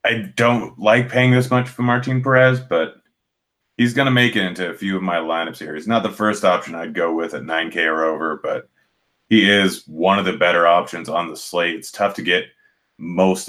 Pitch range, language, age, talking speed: 85-105 Hz, English, 30-49, 225 wpm